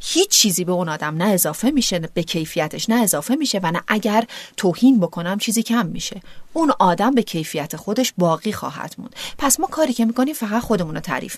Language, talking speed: Persian, 205 wpm